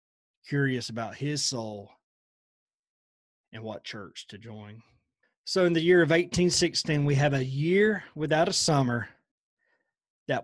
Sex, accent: male, American